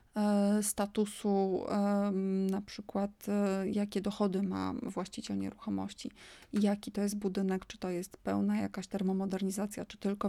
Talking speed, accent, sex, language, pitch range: 115 wpm, native, female, Polish, 200-215 Hz